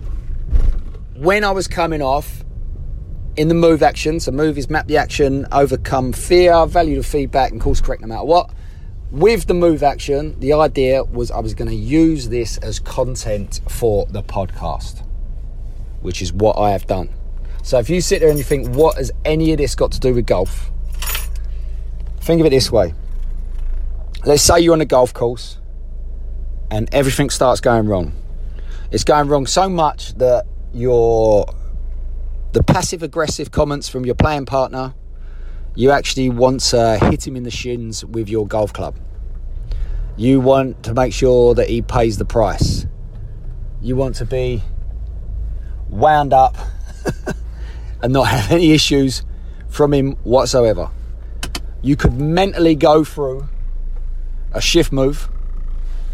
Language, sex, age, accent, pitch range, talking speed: English, male, 30-49, British, 90-140 Hz, 155 wpm